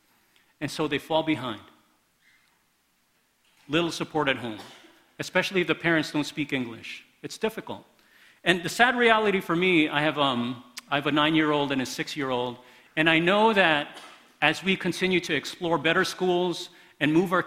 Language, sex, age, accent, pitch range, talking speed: English, male, 40-59, American, 140-180 Hz, 160 wpm